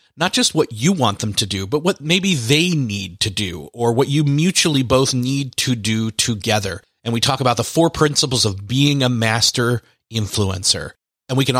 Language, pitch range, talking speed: English, 110-150 Hz, 200 wpm